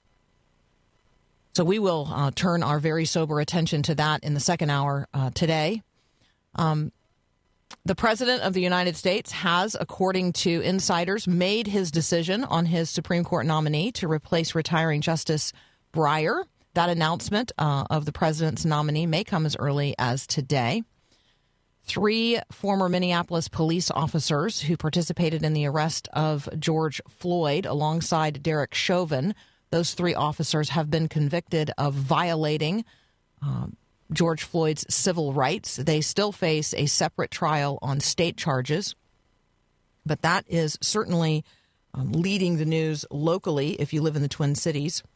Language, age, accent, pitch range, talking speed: English, 40-59, American, 145-175 Hz, 145 wpm